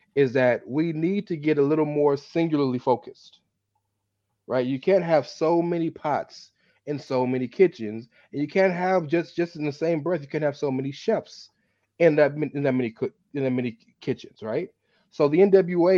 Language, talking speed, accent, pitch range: English, 190 wpm, American, 125-160 Hz